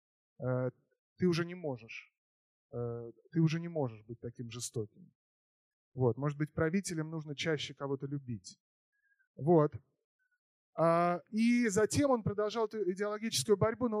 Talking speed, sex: 120 wpm, male